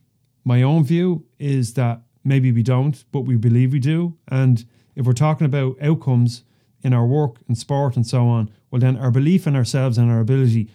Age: 30-49